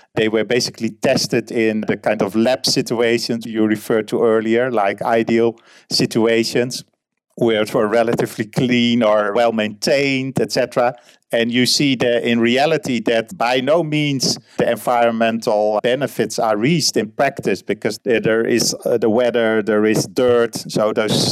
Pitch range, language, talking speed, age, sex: 110-125 Hz, English, 145 wpm, 50-69, male